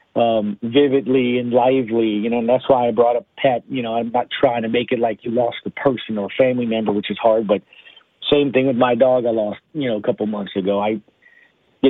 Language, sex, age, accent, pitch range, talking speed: English, male, 50-69, American, 120-165 Hz, 240 wpm